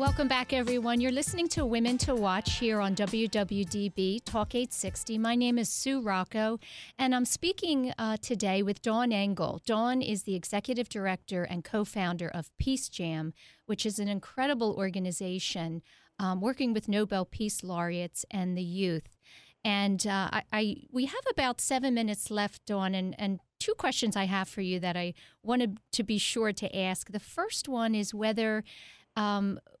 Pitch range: 195-230 Hz